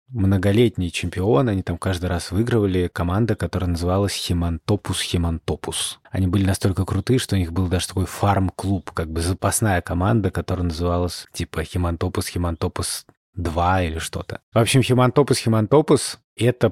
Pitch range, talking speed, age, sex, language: 90-110 Hz, 130 wpm, 30-49, male, Russian